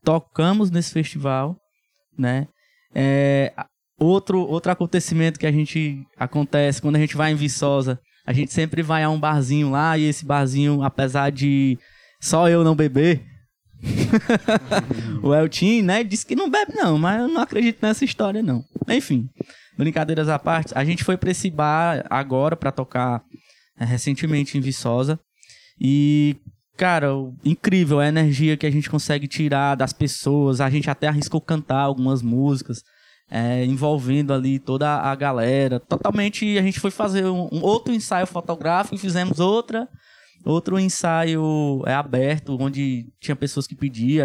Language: Portuguese